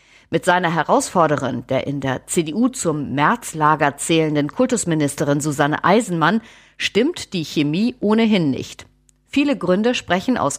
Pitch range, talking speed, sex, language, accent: 145-205 Hz, 125 wpm, female, German, German